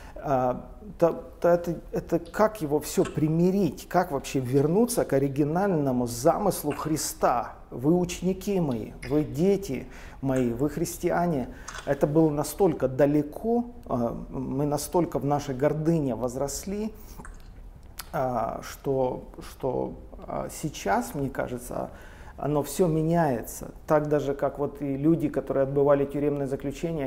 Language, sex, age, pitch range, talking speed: Russian, male, 40-59, 135-165 Hz, 105 wpm